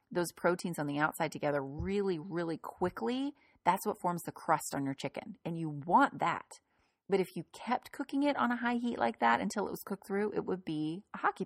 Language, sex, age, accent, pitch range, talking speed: English, female, 30-49, American, 155-215 Hz, 225 wpm